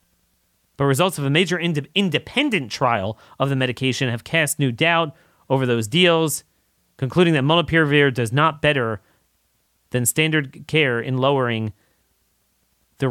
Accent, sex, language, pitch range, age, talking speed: American, male, English, 120-175 Hz, 30-49, 135 wpm